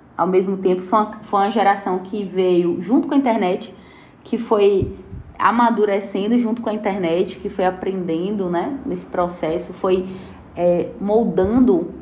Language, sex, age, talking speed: Portuguese, female, 20-39, 150 wpm